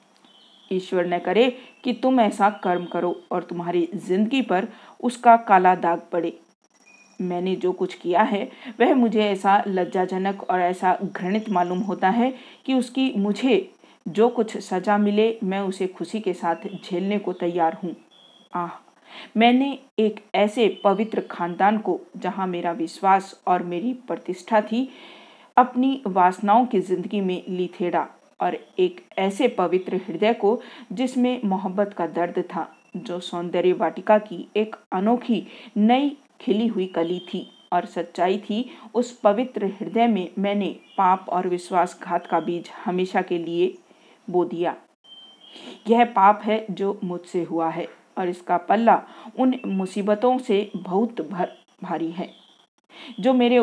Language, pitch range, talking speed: Hindi, 180-230 Hz, 140 wpm